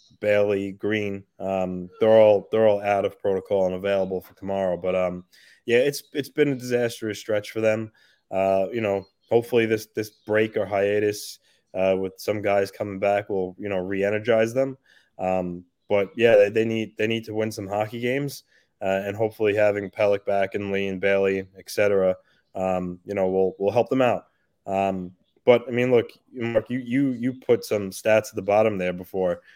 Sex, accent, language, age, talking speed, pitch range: male, American, English, 20-39, 195 wpm, 95-110 Hz